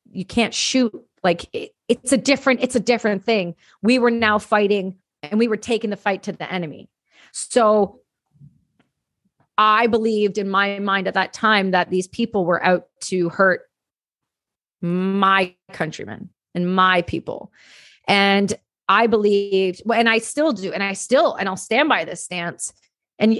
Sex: female